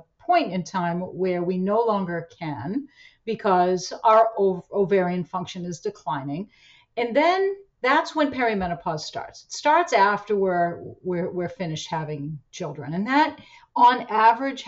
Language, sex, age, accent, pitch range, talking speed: English, female, 50-69, American, 165-205 Hz, 135 wpm